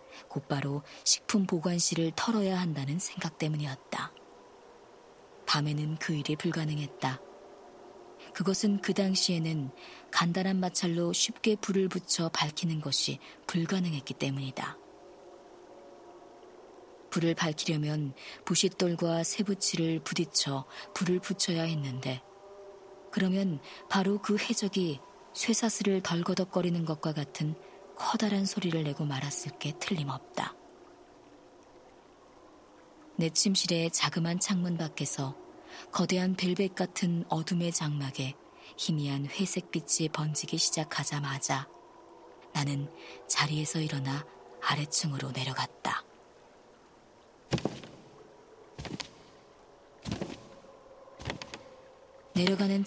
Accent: native